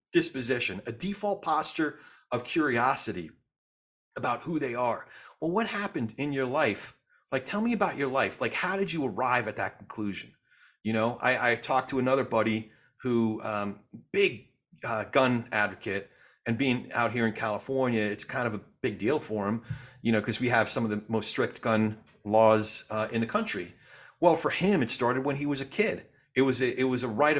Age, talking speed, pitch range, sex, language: 40-59, 200 wpm, 110-145 Hz, male, English